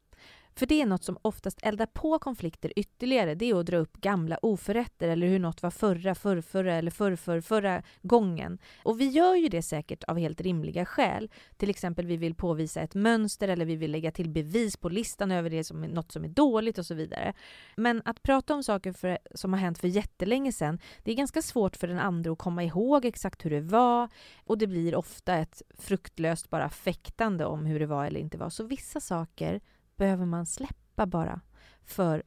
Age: 30-49